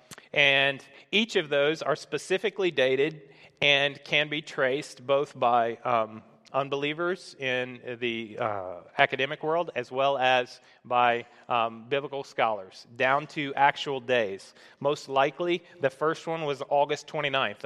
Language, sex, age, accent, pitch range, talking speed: English, male, 30-49, American, 125-145 Hz, 135 wpm